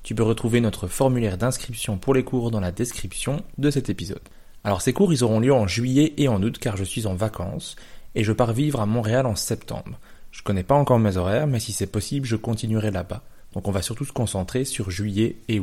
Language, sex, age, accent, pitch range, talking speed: French, male, 20-39, French, 100-125 Hz, 240 wpm